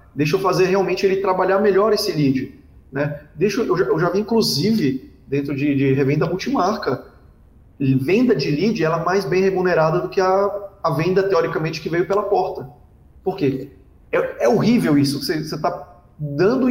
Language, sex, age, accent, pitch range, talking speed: Portuguese, male, 30-49, Brazilian, 140-210 Hz, 180 wpm